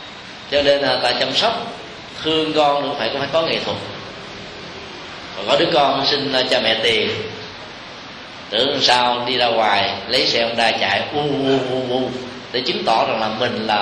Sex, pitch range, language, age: male, 115-140 Hz, Vietnamese, 20-39